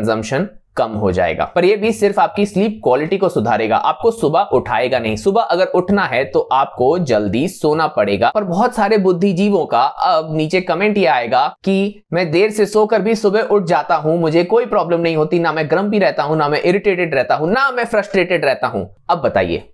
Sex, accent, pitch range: male, native, 160-215 Hz